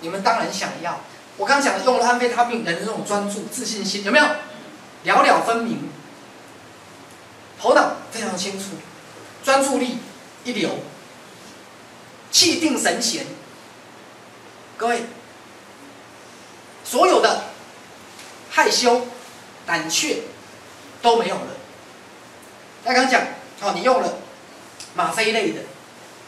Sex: male